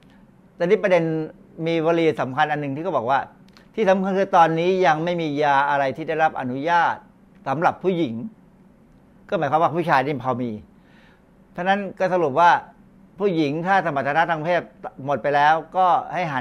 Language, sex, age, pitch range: Thai, male, 60-79, 135-180 Hz